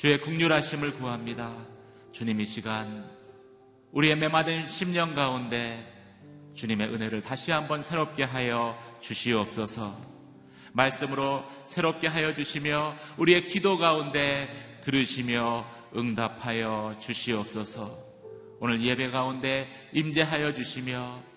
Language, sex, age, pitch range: Korean, male, 30-49, 105-140 Hz